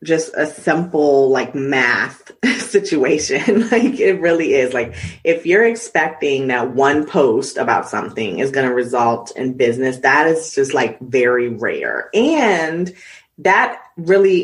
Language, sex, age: English, female, 30-49